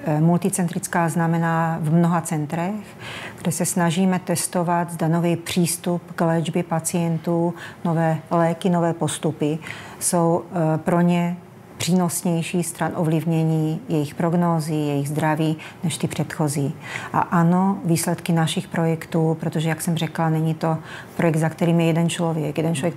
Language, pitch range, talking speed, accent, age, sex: Czech, 155-170 Hz, 130 wpm, native, 40-59, female